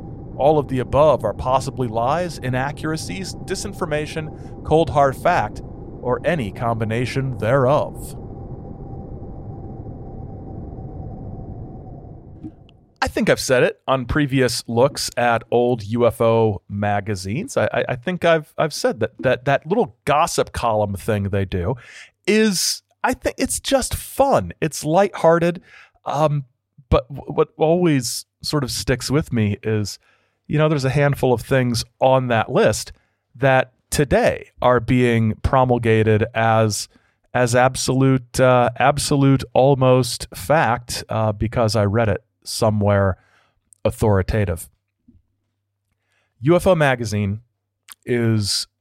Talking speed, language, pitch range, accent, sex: 115 wpm, English, 105-140 Hz, American, male